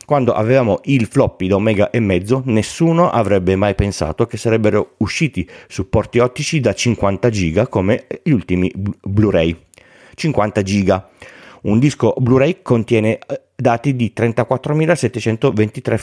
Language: Italian